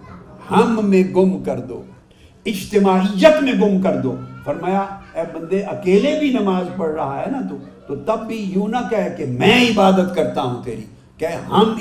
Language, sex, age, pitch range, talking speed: Urdu, male, 50-69, 160-220 Hz, 100 wpm